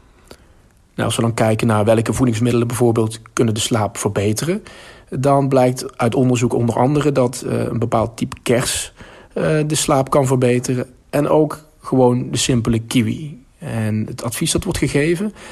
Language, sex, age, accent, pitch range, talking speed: Dutch, male, 40-59, Dutch, 115-135 Hz, 160 wpm